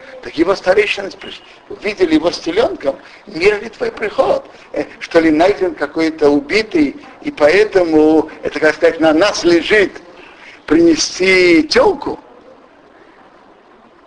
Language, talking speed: Russian, 110 wpm